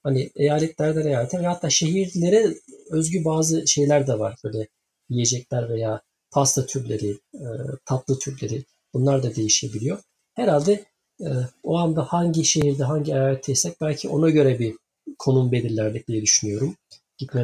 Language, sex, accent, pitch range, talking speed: Turkish, male, native, 135-170 Hz, 125 wpm